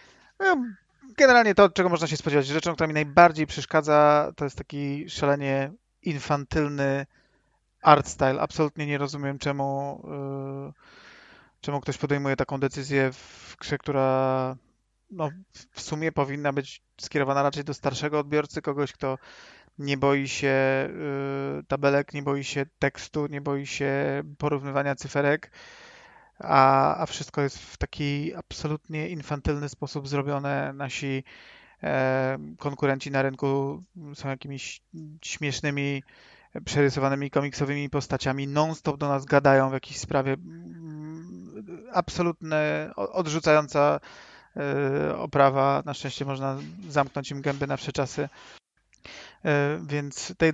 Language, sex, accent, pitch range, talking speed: Polish, male, native, 140-150 Hz, 120 wpm